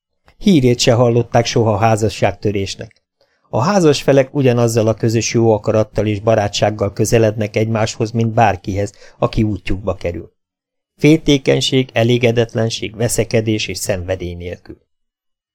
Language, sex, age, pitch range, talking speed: Hungarian, male, 50-69, 100-125 Hz, 110 wpm